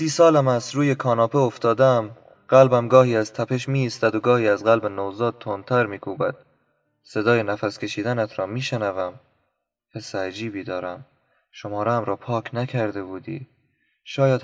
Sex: male